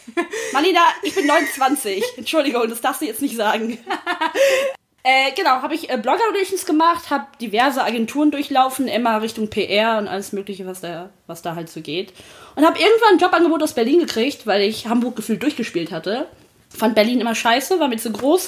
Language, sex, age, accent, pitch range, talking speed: German, female, 20-39, German, 165-265 Hz, 180 wpm